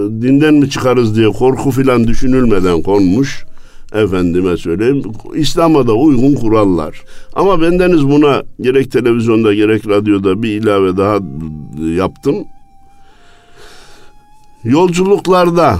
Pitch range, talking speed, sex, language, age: 95-140 Hz, 100 wpm, male, Turkish, 60-79